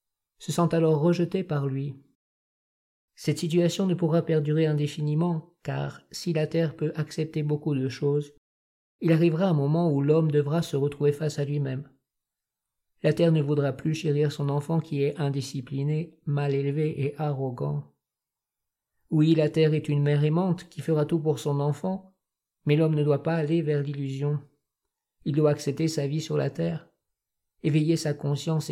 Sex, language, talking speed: male, French, 165 wpm